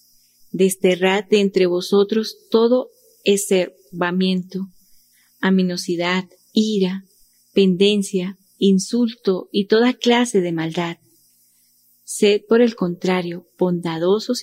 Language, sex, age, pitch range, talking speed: Spanish, female, 30-49, 175-215 Hz, 85 wpm